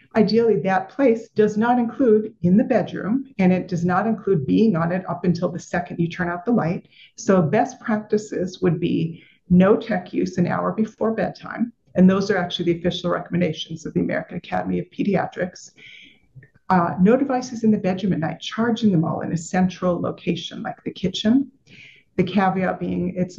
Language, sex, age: English, female, 40-59